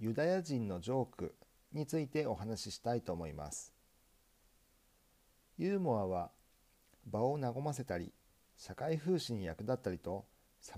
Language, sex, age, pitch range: Japanese, male, 50-69, 100-150 Hz